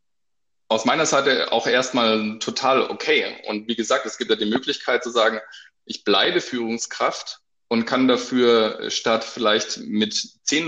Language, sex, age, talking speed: German, male, 20-39, 150 wpm